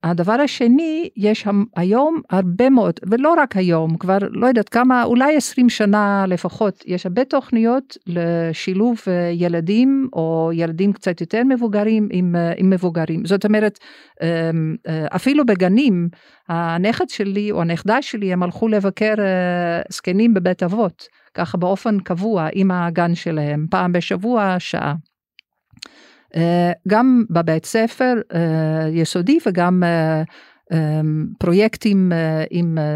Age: 50-69